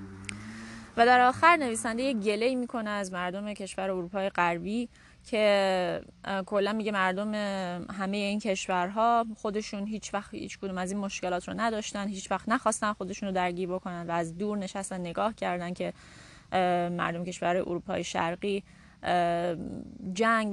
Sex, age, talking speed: female, 10-29, 135 wpm